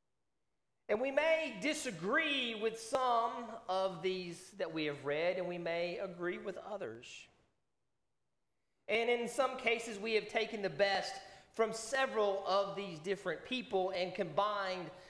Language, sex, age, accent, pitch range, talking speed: English, male, 40-59, American, 180-240 Hz, 140 wpm